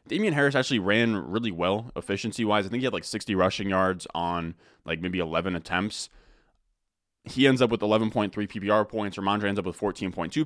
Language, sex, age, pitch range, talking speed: English, male, 20-39, 100-115 Hz, 185 wpm